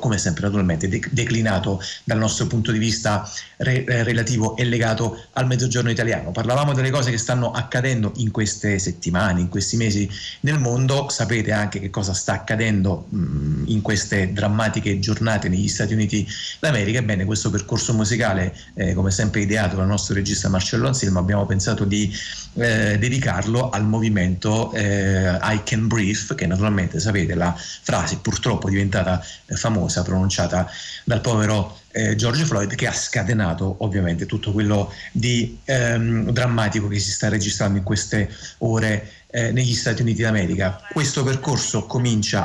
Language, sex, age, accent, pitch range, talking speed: Italian, male, 30-49, native, 100-115 Hz, 155 wpm